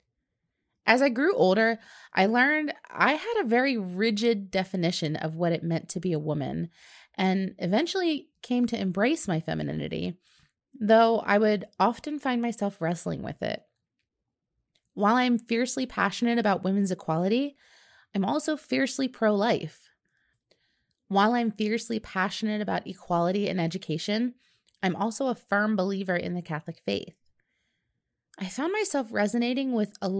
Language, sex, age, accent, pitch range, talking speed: English, female, 20-39, American, 180-240 Hz, 140 wpm